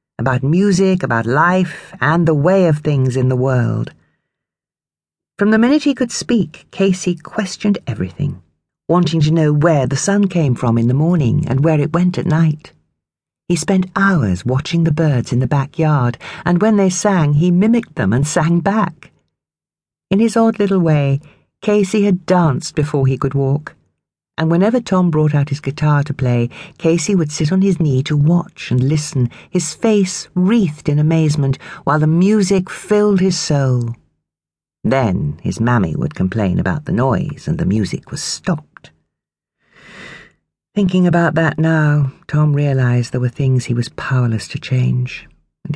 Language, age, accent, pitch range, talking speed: English, 50-69, British, 135-180 Hz, 165 wpm